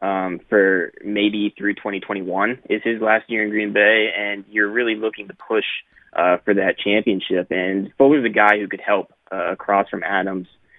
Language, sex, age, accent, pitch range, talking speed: English, male, 20-39, American, 100-110 Hz, 190 wpm